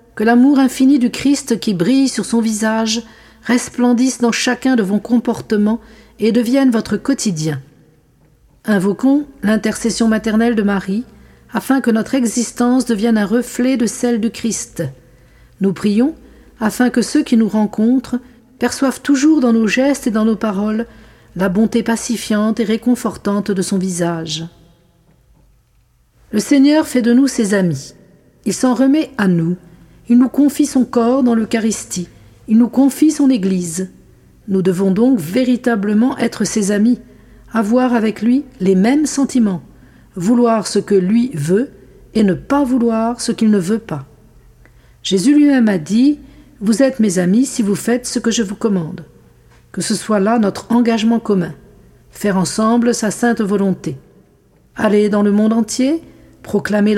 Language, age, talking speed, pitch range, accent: French, 50-69, 155 wpm, 200-245 Hz, French